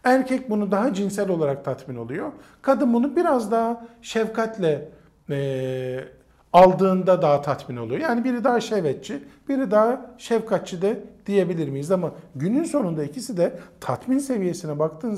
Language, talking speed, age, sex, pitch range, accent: Turkish, 140 wpm, 50-69, male, 140-205 Hz, native